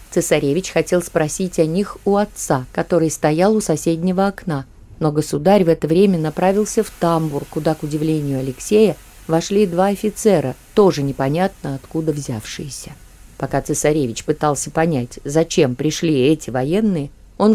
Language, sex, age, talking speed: Russian, female, 20-39, 135 wpm